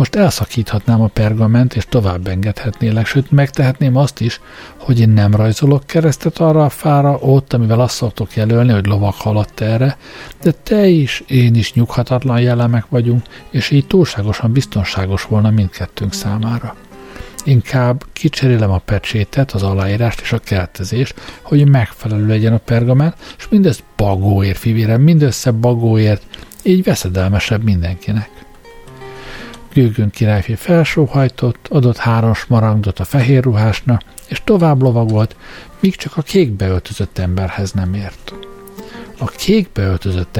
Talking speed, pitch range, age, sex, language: 130 wpm, 100-135 Hz, 60-79, male, Hungarian